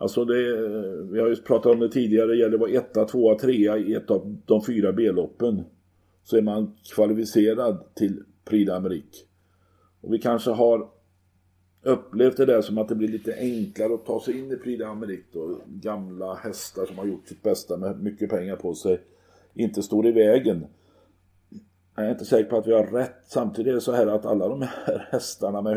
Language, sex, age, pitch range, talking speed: Swedish, male, 50-69, 90-110 Hz, 195 wpm